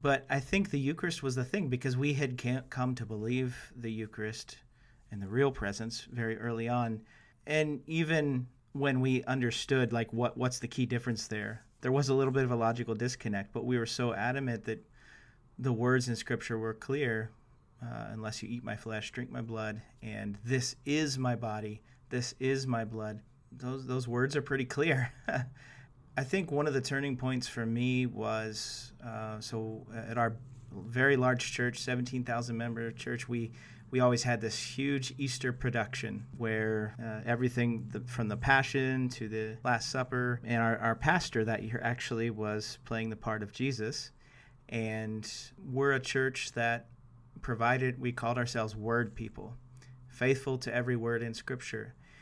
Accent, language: American, English